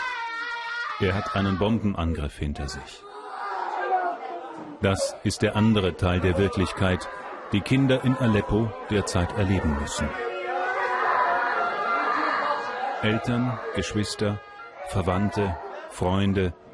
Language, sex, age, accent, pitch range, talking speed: German, male, 40-59, German, 95-130 Hz, 85 wpm